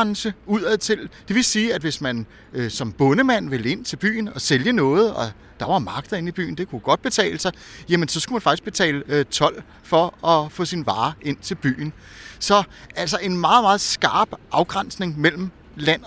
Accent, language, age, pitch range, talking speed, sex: native, Danish, 30-49, 160-220 Hz, 205 wpm, male